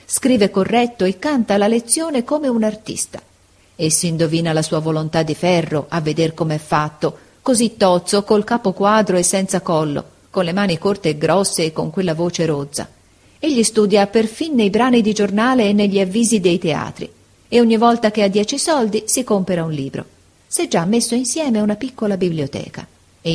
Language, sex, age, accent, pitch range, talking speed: Italian, female, 40-59, native, 155-230 Hz, 185 wpm